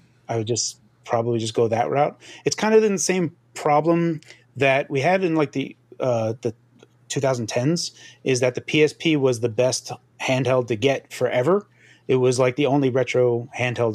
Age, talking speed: 30-49, 175 wpm